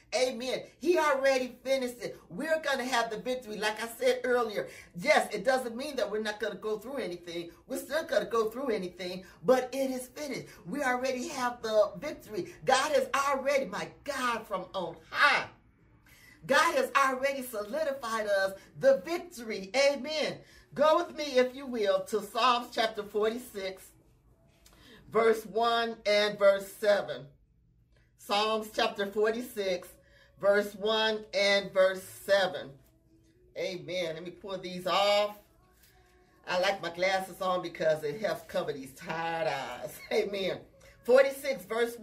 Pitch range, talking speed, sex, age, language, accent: 195-270 Hz, 145 wpm, male, 40-59, English, American